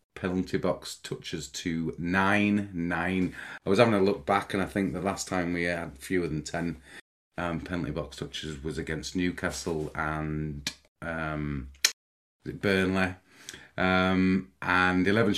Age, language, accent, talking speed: 30-49, English, British, 135 wpm